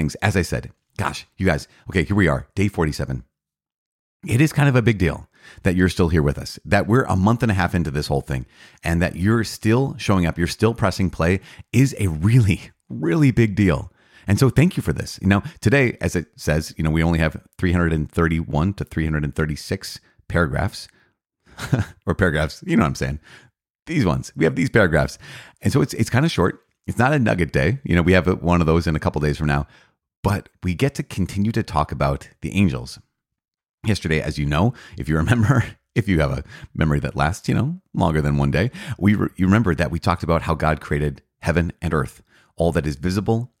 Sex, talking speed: male, 215 wpm